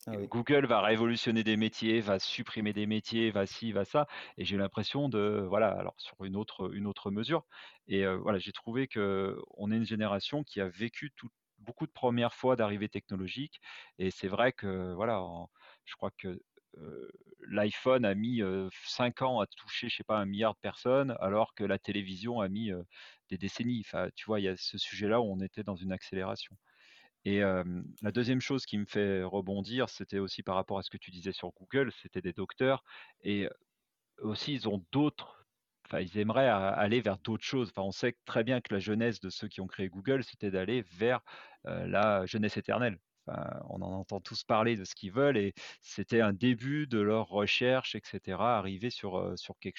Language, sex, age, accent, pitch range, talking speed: French, male, 40-59, French, 100-120 Hz, 205 wpm